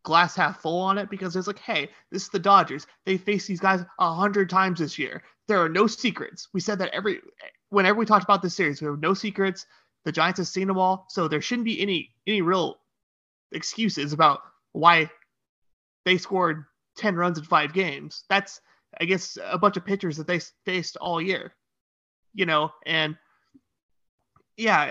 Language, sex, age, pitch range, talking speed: English, male, 30-49, 155-190 Hz, 190 wpm